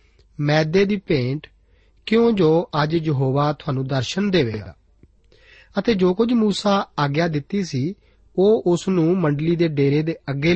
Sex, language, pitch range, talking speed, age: male, Punjabi, 140-185 Hz, 140 wpm, 40-59